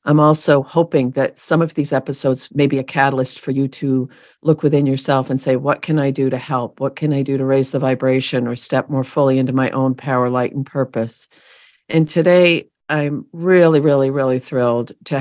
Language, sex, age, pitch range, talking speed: English, female, 50-69, 130-155 Hz, 210 wpm